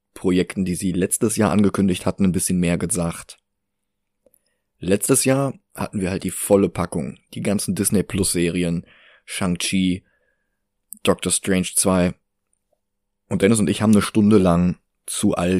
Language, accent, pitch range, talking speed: German, German, 90-110 Hz, 145 wpm